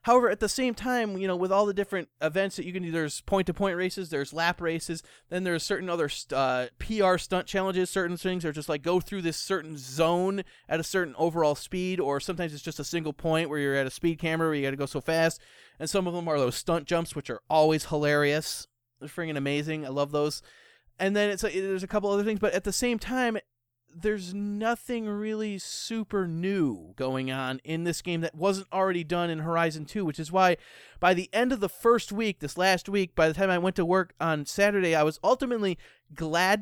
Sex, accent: male, American